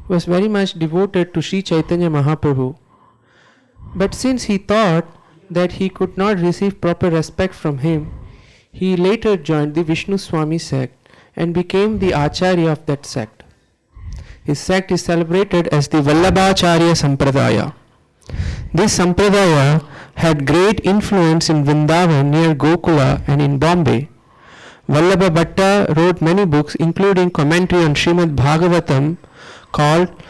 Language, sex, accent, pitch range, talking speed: English, male, Indian, 150-185 Hz, 130 wpm